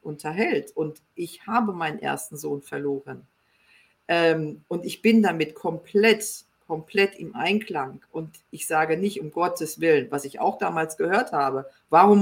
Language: German